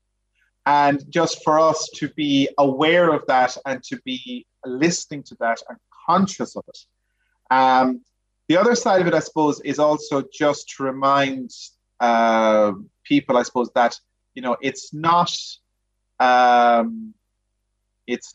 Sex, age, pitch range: male, 30-49, 115-150 Hz